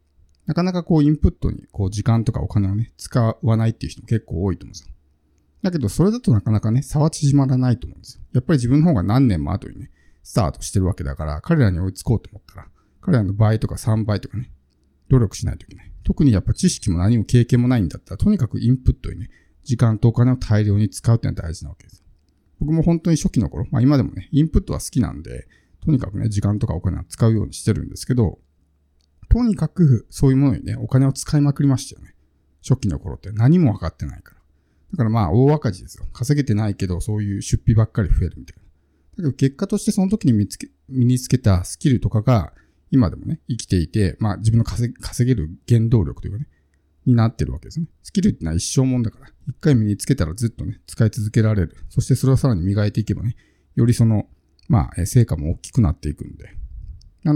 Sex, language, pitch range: male, Japanese, 90-130 Hz